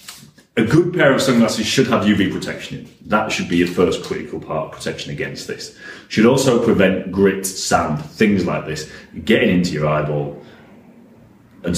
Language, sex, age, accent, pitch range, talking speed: English, male, 30-49, British, 80-115 Hz, 175 wpm